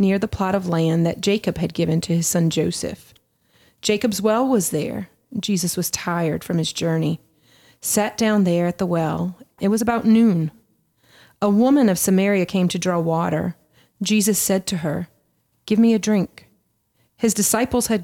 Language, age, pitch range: English, 30-49, 175-220 Hz